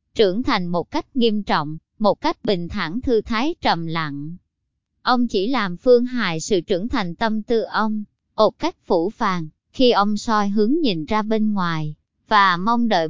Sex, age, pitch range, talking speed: male, 20-39, 195-240 Hz, 185 wpm